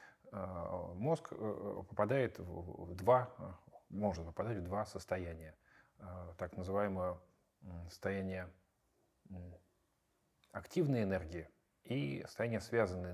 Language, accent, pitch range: Russian, native, 90-115 Hz